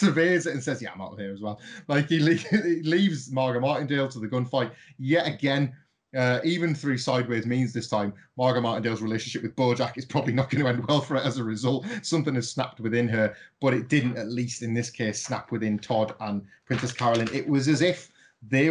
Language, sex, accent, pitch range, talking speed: English, male, British, 110-135 Hz, 230 wpm